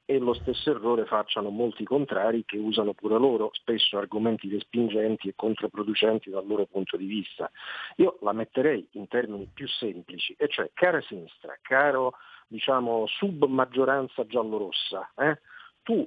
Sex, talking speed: male, 140 wpm